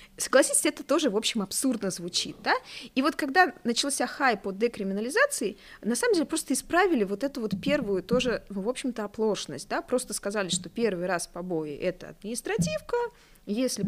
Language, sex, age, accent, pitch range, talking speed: Russian, female, 20-39, native, 175-250 Hz, 175 wpm